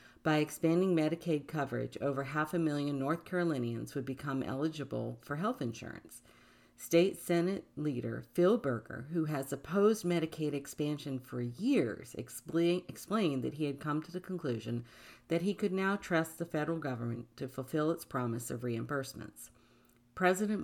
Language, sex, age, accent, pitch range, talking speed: English, female, 50-69, American, 125-160 Hz, 150 wpm